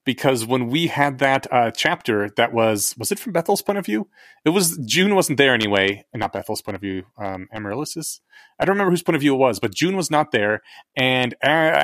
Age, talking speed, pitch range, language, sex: 30-49, 235 wpm, 115-150 Hz, English, male